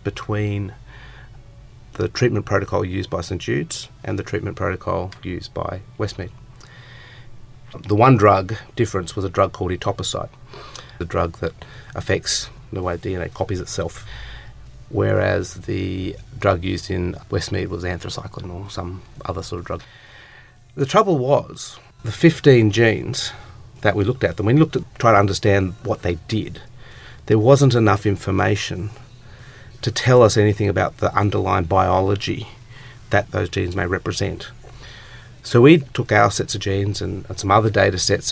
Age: 30-49